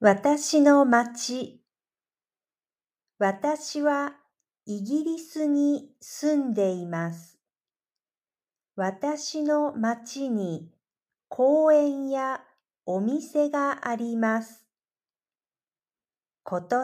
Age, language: 50-69, Japanese